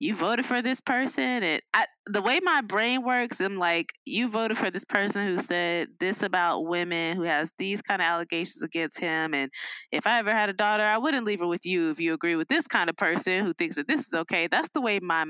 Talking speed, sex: 245 wpm, female